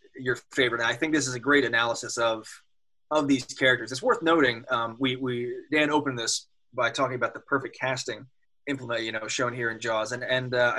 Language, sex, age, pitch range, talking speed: English, male, 20-39, 120-145 Hz, 210 wpm